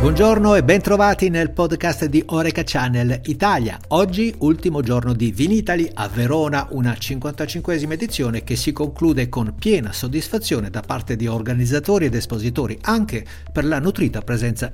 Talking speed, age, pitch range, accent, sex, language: 150 wpm, 60-79, 115-155 Hz, native, male, Italian